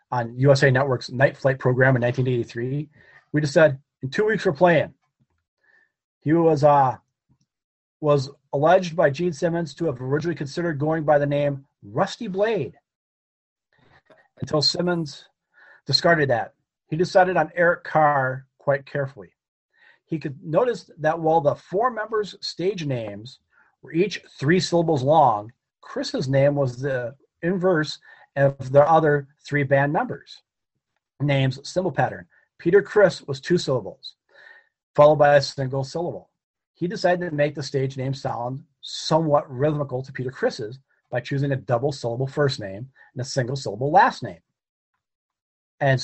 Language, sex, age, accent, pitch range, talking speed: English, male, 40-59, American, 135-165 Hz, 145 wpm